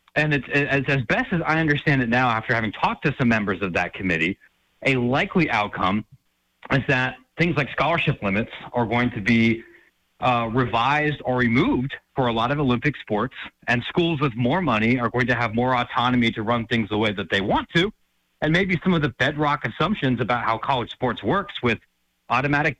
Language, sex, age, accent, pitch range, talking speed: English, male, 30-49, American, 120-160 Hz, 195 wpm